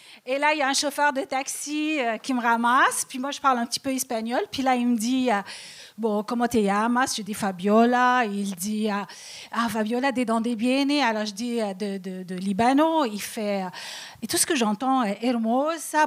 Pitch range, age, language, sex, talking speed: 225-300 Hz, 40-59, French, female, 235 wpm